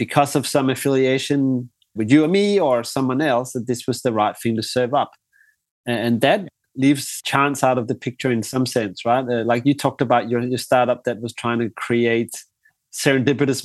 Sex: male